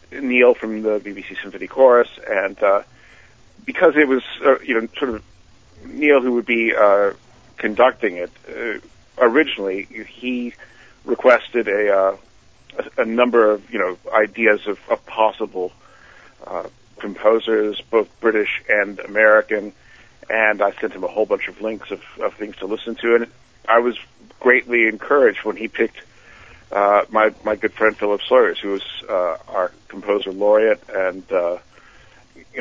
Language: English